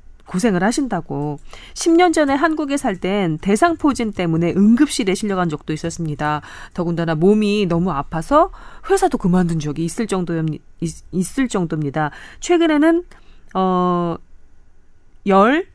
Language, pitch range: Korean, 165-235 Hz